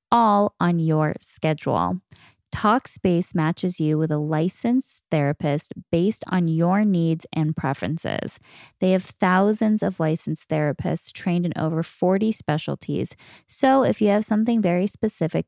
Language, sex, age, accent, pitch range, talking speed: English, female, 10-29, American, 155-205 Hz, 135 wpm